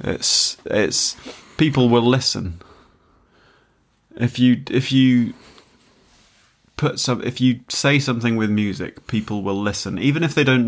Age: 30-49